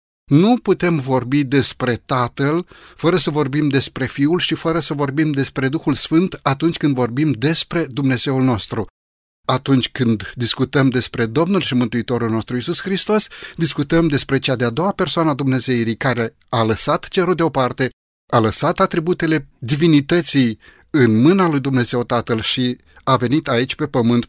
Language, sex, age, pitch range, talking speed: Romanian, male, 30-49, 120-165 Hz, 150 wpm